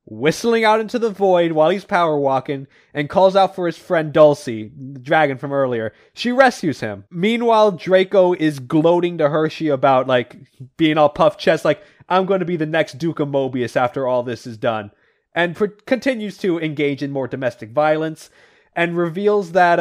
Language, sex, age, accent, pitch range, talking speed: English, male, 20-39, American, 140-195 Hz, 190 wpm